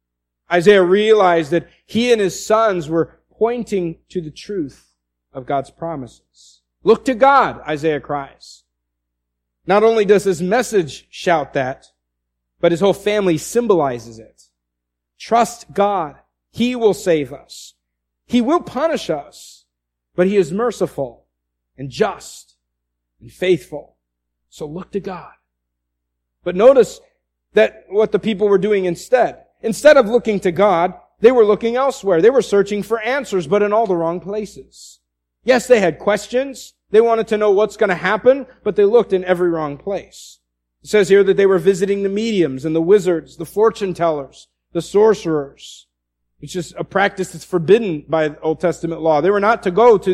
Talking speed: 165 wpm